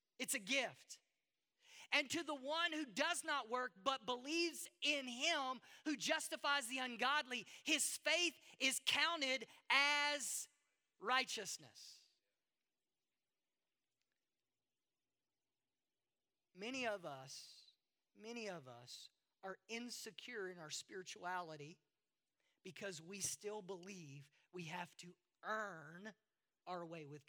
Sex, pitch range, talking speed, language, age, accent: male, 215-285 Hz, 105 wpm, English, 40-59, American